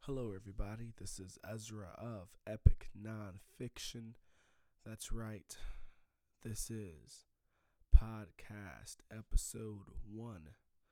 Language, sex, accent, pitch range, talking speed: English, male, American, 95-110 Hz, 80 wpm